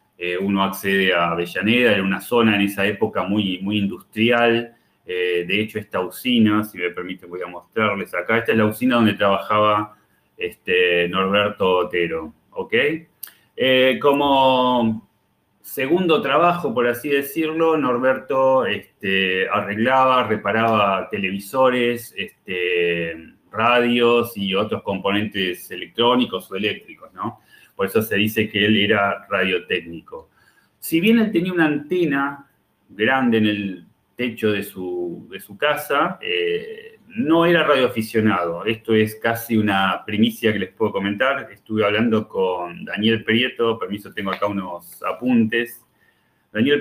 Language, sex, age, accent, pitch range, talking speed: Spanish, male, 30-49, Argentinian, 100-125 Hz, 130 wpm